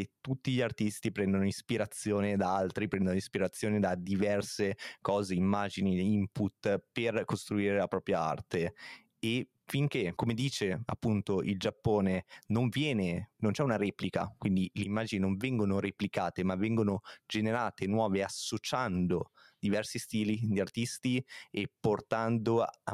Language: Italian